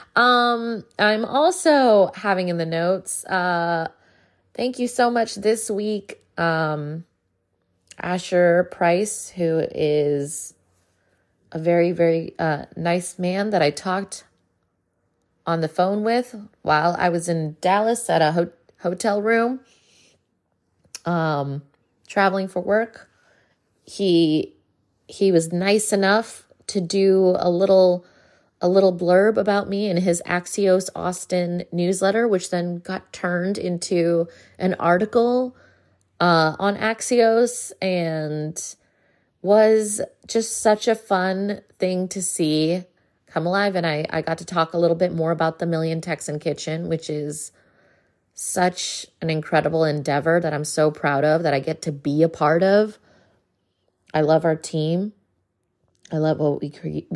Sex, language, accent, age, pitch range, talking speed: female, English, American, 20-39, 155-195 Hz, 135 wpm